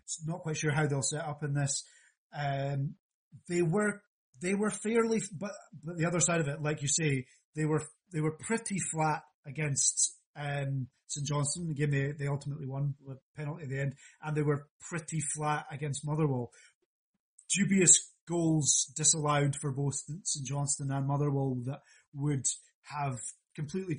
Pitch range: 140-160 Hz